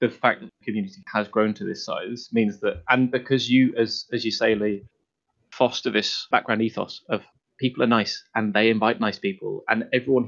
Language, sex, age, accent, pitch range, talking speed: English, male, 20-39, British, 105-130 Hz, 205 wpm